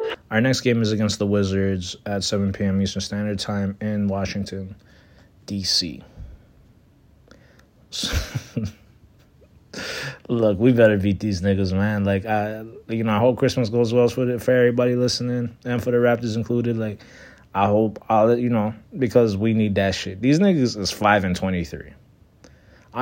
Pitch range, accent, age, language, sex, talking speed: 100-125 Hz, American, 20-39, English, male, 155 wpm